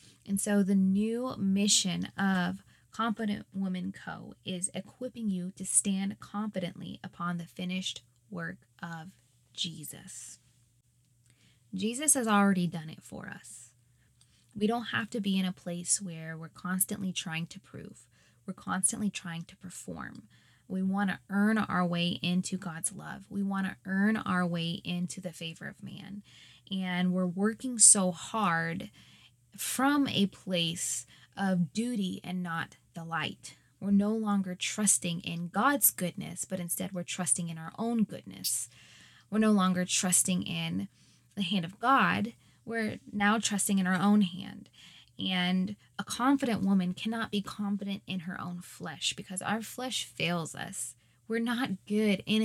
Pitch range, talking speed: 175-205 Hz, 150 wpm